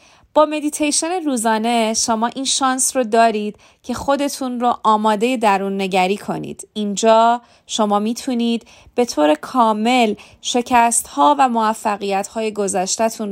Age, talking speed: 30-49, 115 wpm